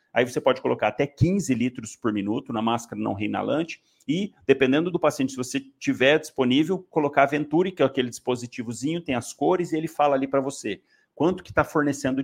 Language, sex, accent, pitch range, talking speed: Portuguese, male, Brazilian, 130-160 Hz, 200 wpm